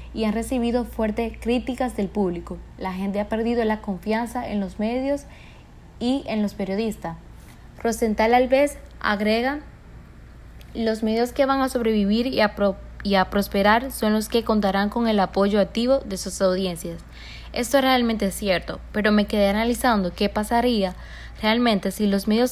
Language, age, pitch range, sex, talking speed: Spanish, 20-39, 195-230 Hz, female, 155 wpm